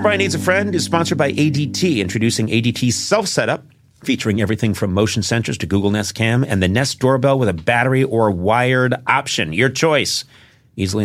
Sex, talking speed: male, 180 wpm